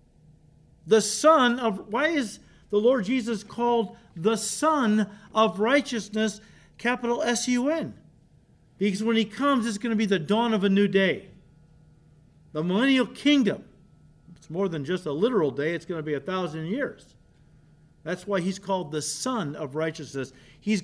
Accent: American